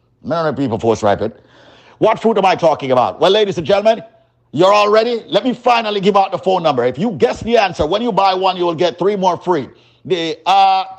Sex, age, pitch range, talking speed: male, 50-69, 145-215 Hz, 235 wpm